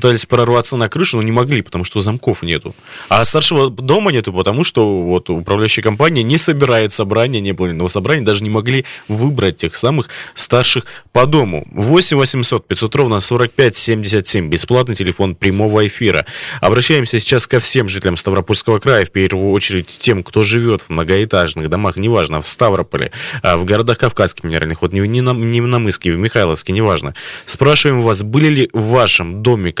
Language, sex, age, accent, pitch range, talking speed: Russian, male, 30-49, native, 95-125 Hz, 170 wpm